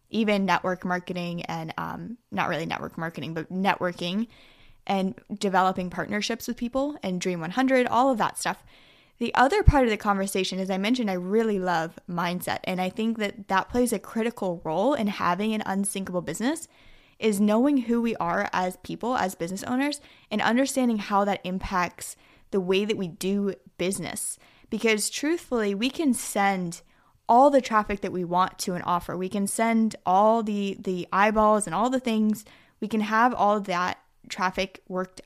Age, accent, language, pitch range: 10-29, American, English, 180-230 Hz